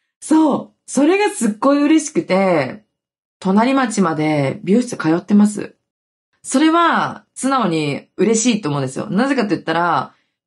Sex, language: female, Japanese